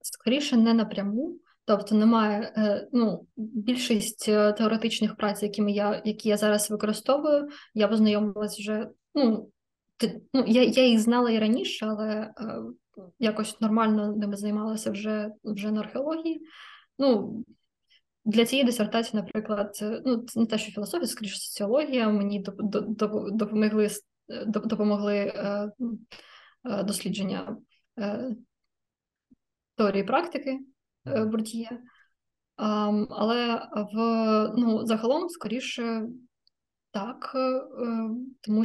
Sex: female